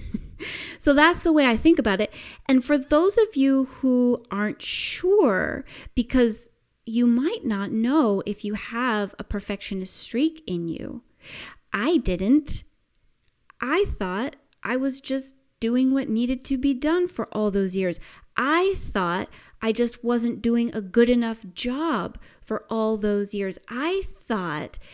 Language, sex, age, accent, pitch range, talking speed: English, female, 30-49, American, 210-270 Hz, 150 wpm